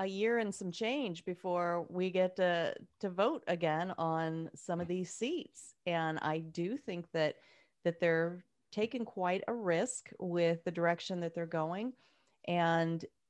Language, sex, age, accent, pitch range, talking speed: English, female, 30-49, American, 175-235 Hz, 160 wpm